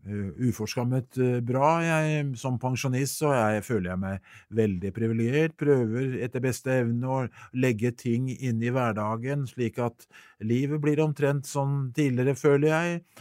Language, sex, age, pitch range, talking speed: English, male, 50-69, 110-135 Hz, 130 wpm